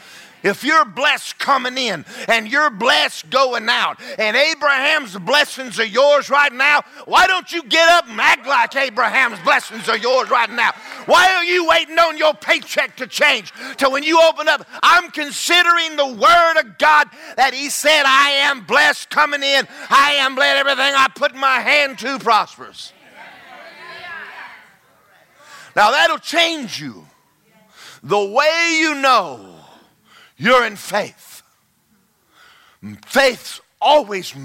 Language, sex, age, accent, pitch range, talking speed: English, male, 50-69, American, 225-300 Hz, 145 wpm